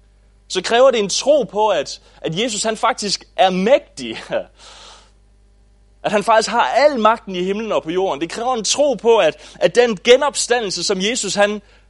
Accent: Danish